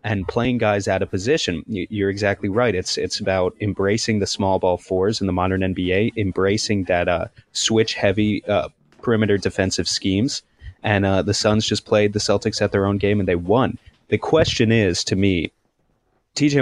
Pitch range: 95-105 Hz